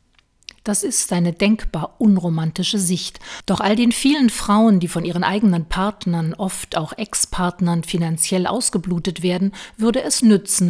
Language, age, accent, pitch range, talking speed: German, 50-69, German, 175-210 Hz, 140 wpm